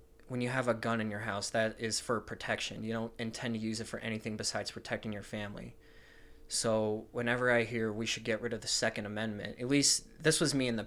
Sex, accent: male, American